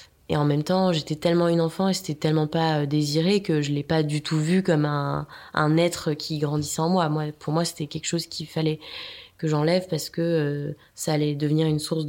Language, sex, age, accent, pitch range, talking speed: French, female, 20-39, French, 150-170 Hz, 230 wpm